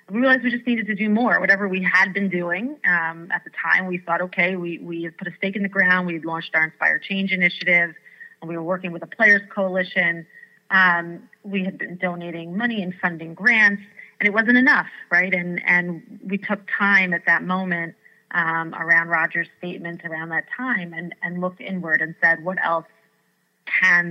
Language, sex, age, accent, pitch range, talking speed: English, female, 30-49, American, 170-200 Hz, 205 wpm